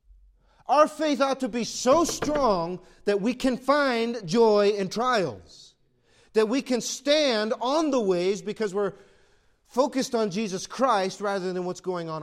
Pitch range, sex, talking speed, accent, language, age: 155-240 Hz, male, 155 wpm, American, English, 40-59